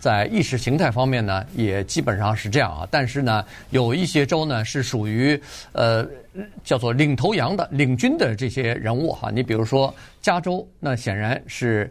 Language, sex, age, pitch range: Chinese, male, 50-69, 110-145 Hz